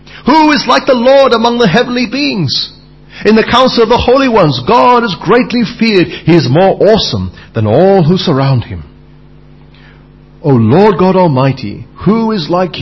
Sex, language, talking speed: male, English, 170 wpm